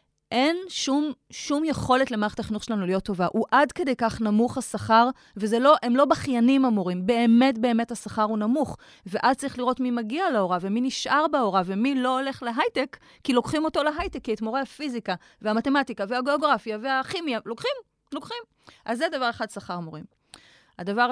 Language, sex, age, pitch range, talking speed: Hebrew, female, 30-49, 175-255 Hz, 165 wpm